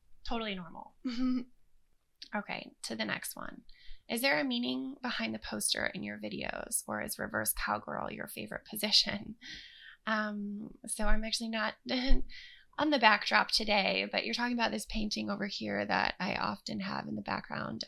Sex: female